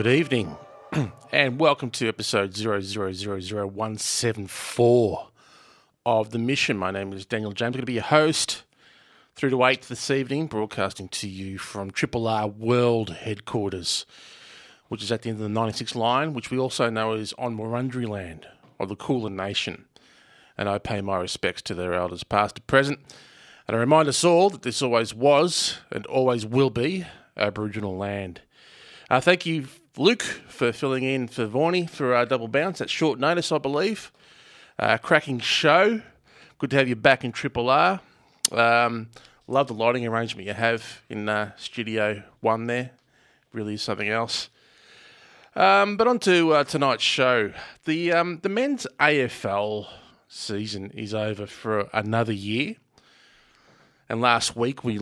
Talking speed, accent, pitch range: 170 wpm, Australian, 105-135 Hz